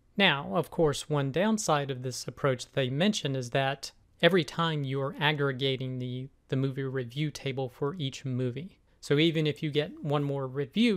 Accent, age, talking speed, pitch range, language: American, 40-59, 180 wpm, 130-155 Hz, English